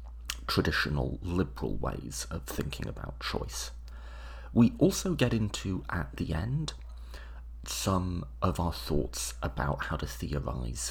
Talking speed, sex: 120 wpm, male